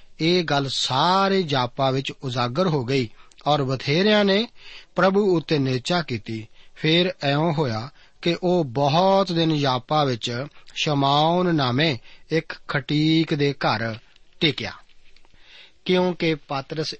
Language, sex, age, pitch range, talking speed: Punjabi, male, 40-59, 130-165 Hz, 115 wpm